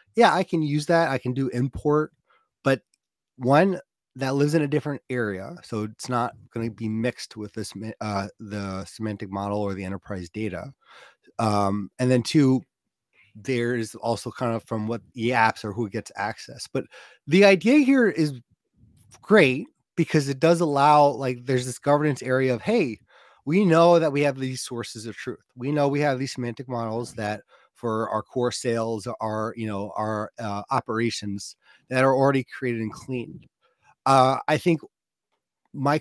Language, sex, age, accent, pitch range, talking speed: English, male, 30-49, American, 110-150 Hz, 175 wpm